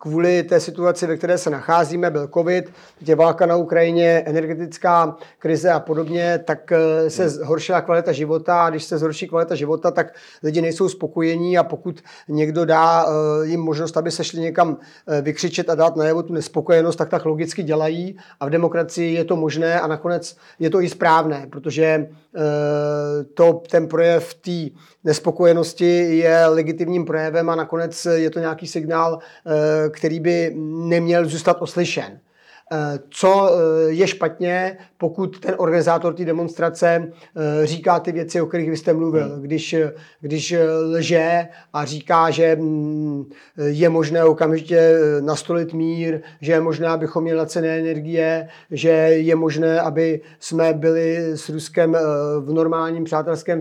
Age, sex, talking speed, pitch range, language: 30-49, male, 145 wpm, 160-170 Hz, Czech